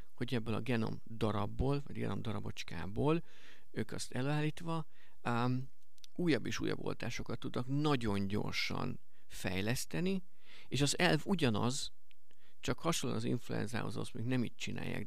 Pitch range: 115-150 Hz